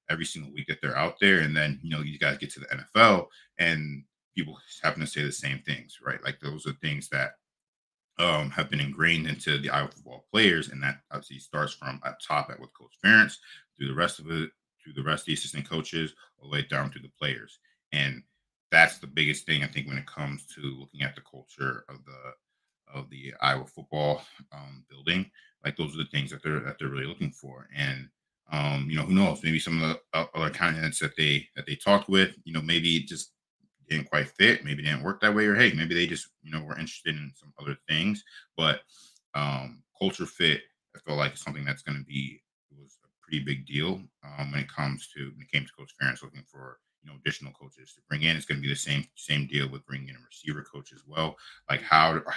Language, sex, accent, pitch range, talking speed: English, male, American, 70-80 Hz, 235 wpm